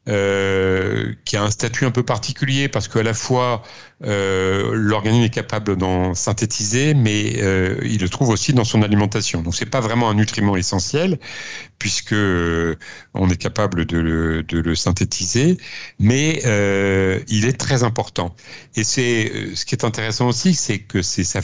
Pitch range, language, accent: 95-125 Hz, French, French